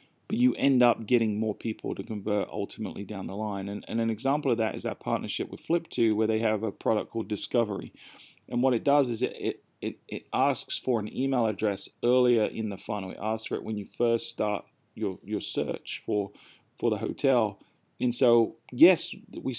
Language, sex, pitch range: English, male, 110-125 Hz